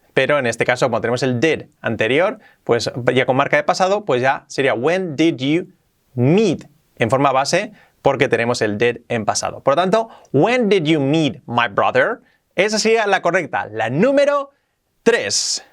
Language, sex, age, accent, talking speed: Spanish, male, 30-49, Spanish, 180 wpm